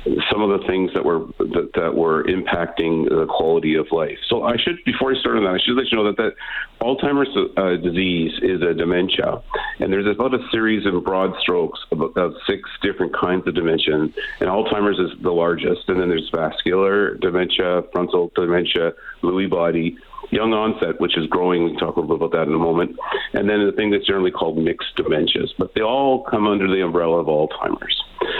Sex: male